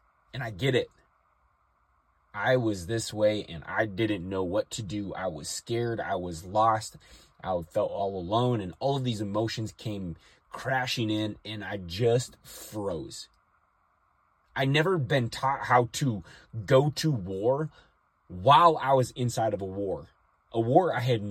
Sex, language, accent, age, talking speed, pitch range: male, English, American, 20-39, 160 wpm, 90-125 Hz